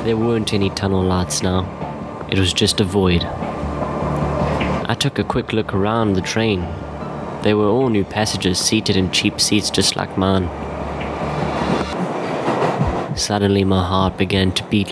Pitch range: 90-105 Hz